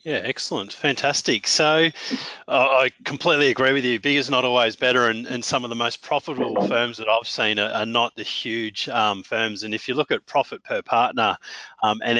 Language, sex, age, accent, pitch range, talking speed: English, male, 30-49, Australian, 105-130 Hz, 210 wpm